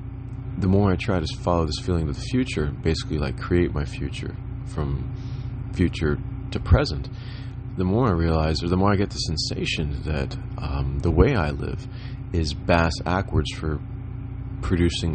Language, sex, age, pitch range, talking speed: English, male, 30-49, 80-120 Hz, 165 wpm